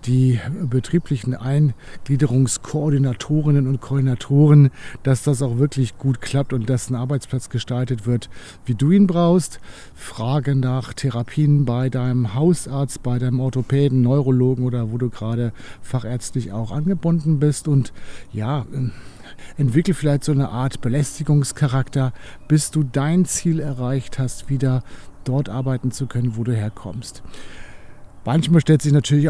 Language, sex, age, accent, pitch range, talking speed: German, male, 60-79, German, 120-145 Hz, 135 wpm